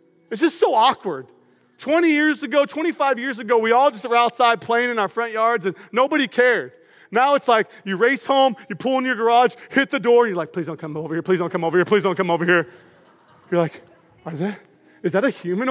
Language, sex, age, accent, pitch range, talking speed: English, male, 30-49, American, 190-260 Hz, 235 wpm